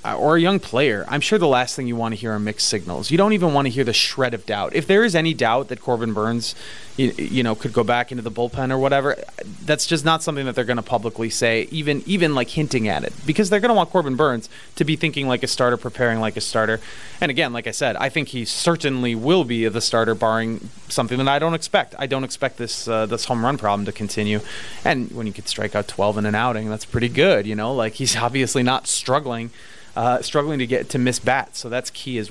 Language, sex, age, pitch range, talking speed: English, male, 30-49, 115-145 Hz, 260 wpm